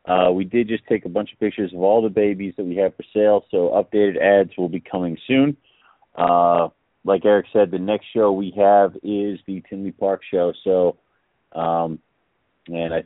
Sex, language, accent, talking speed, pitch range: male, English, American, 200 wpm, 90-105 Hz